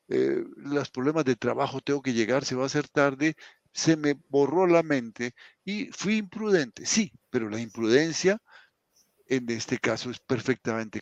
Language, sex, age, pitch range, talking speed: Spanish, male, 50-69, 105-140 Hz, 165 wpm